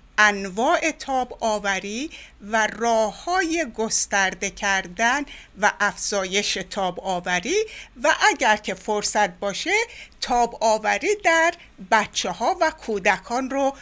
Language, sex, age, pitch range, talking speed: Persian, female, 60-79, 195-260 Hz, 110 wpm